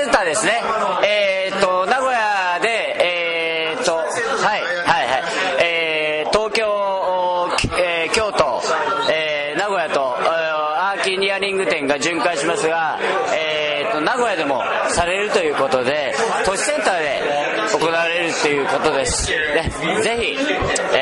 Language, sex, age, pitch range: Japanese, male, 40-59, 140-210 Hz